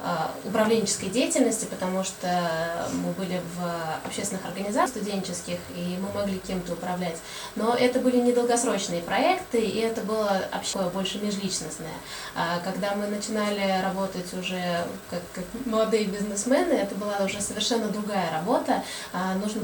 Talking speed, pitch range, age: 130 wpm, 185-220 Hz, 20-39